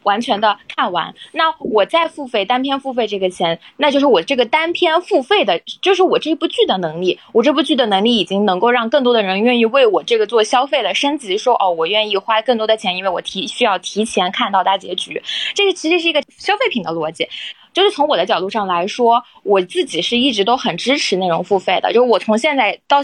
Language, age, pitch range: Chinese, 20-39, 190-285 Hz